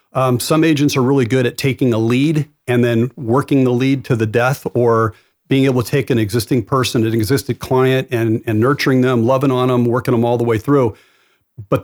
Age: 40-59